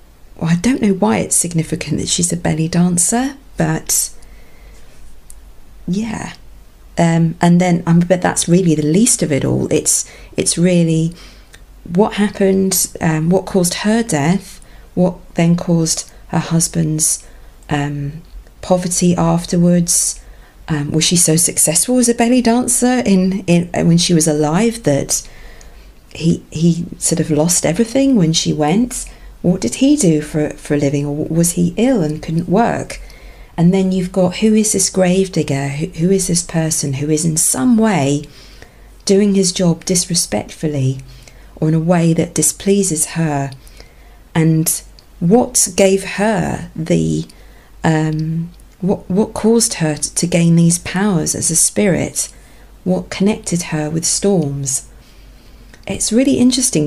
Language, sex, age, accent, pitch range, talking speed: English, female, 40-59, British, 155-195 Hz, 145 wpm